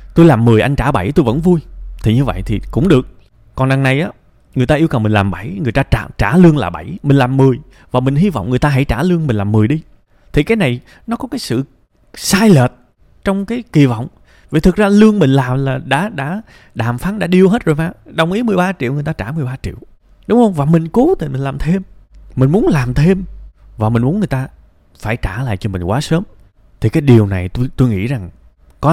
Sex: male